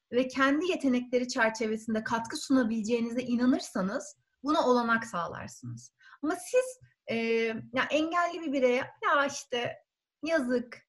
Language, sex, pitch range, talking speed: Turkish, female, 220-290 Hz, 110 wpm